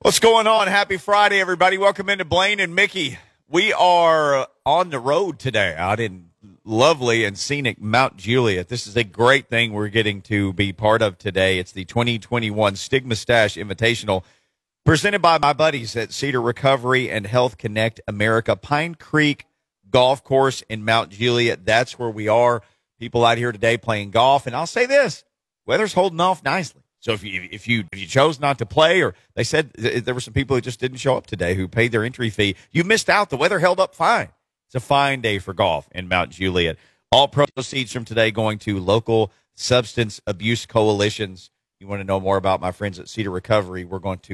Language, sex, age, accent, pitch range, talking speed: English, male, 40-59, American, 100-135 Hz, 205 wpm